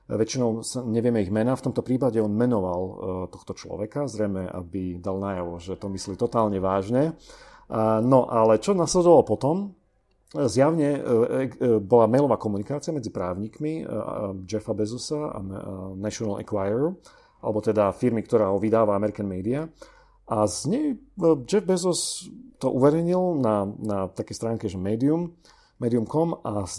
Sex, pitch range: male, 100-135 Hz